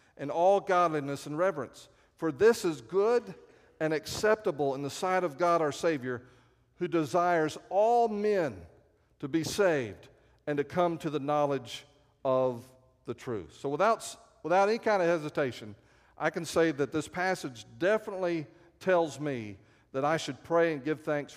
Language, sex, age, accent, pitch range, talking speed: English, male, 50-69, American, 130-175 Hz, 160 wpm